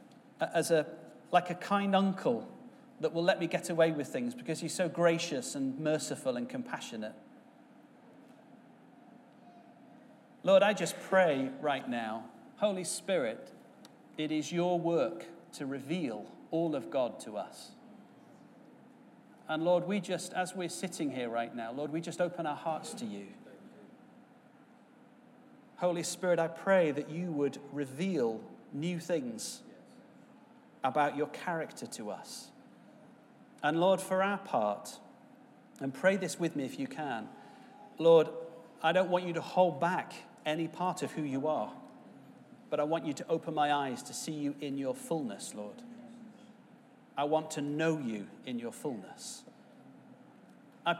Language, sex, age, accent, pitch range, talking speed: English, male, 40-59, British, 155-240 Hz, 145 wpm